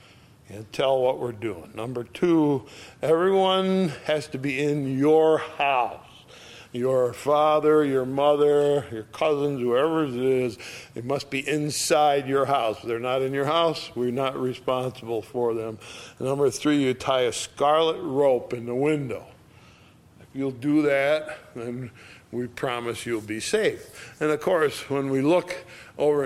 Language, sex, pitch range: English, male, 120-150 Hz